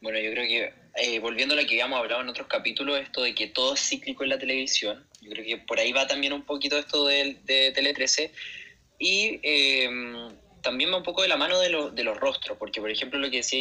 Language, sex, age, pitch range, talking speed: Spanish, male, 20-39, 120-145 Hz, 245 wpm